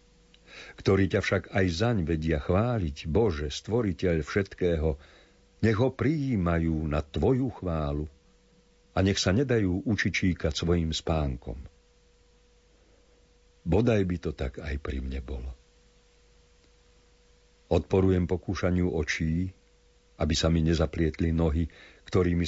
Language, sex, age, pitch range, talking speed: Slovak, male, 50-69, 75-95 Hz, 105 wpm